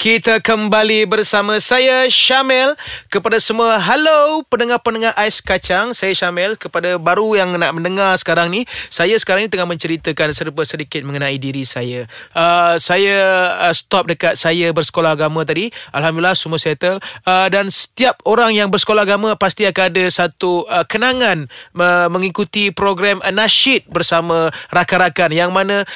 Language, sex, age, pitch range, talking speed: Malay, male, 30-49, 165-210 Hz, 145 wpm